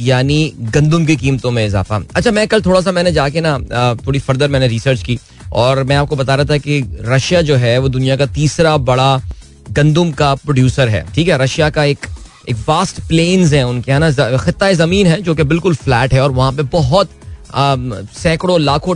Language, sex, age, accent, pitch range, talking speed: Hindi, male, 20-39, native, 125-165 Hz, 200 wpm